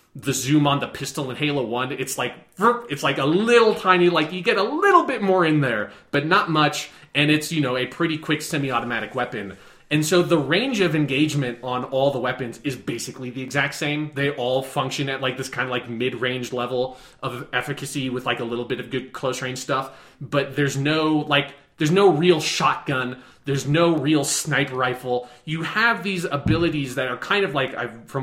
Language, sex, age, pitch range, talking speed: English, male, 20-39, 125-155 Hz, 205 wpm